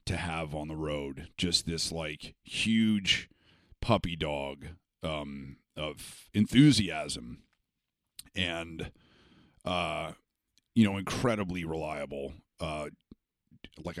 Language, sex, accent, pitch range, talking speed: English, male, American, 80-100 Hz, 90 wpm